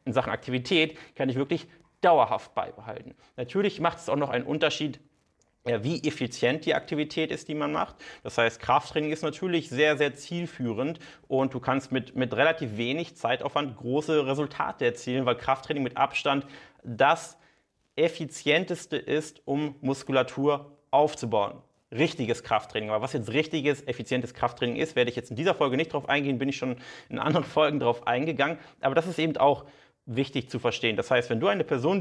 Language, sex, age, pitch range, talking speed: German, male, 30-49, 130-160 Hz, 170 wpm